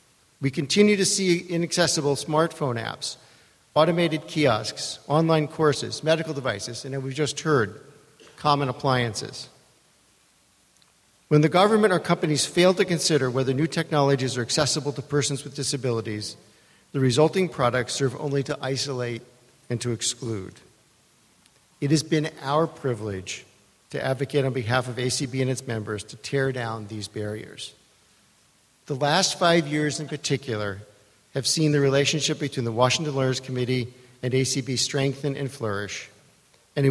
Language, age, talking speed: English, 50-69, 145 wpm